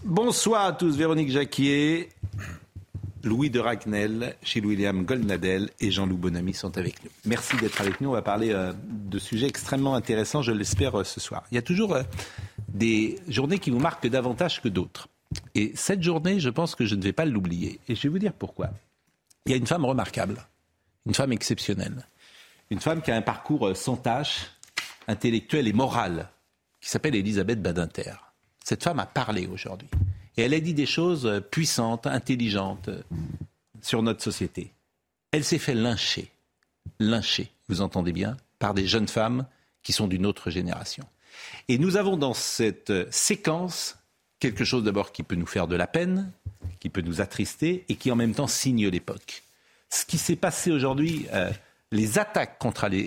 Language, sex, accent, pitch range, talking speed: French, male, French, 100-145 Hz, 175 wpm